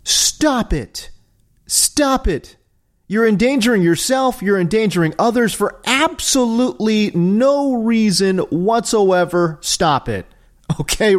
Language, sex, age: English, male, 30-49